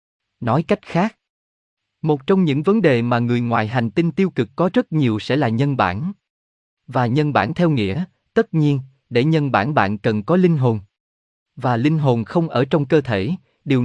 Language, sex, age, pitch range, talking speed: Vietnamese, male, 20-39, 115-160 Hz, 200 wpm